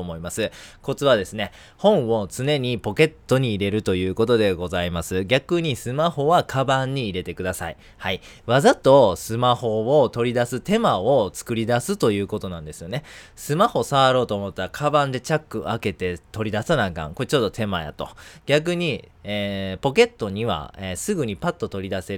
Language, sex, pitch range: Japanese, male, 95-130 Hz